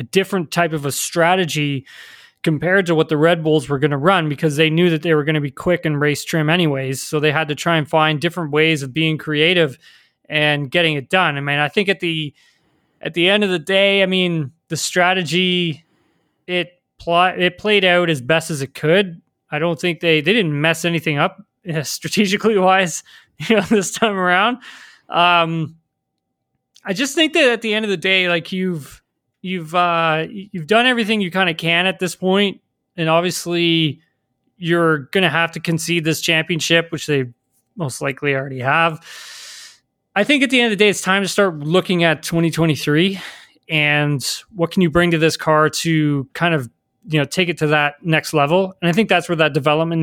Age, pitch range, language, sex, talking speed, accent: 20-39, 150-180 Hz, English, male, 205 wpm, American